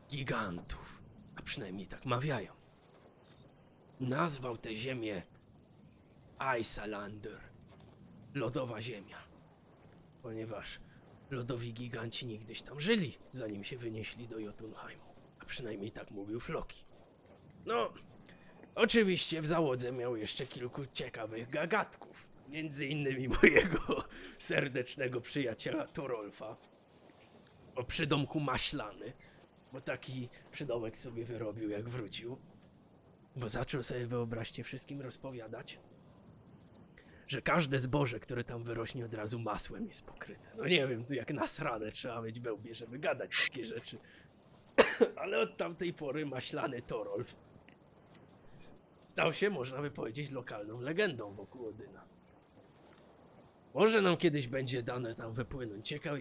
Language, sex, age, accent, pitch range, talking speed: Polish, male, 30-49, native, 115-140 Hz, 110 wpm